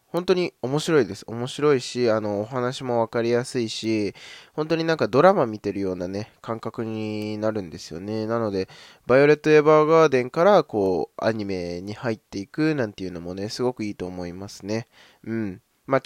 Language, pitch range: Japanese, 95-130 Hz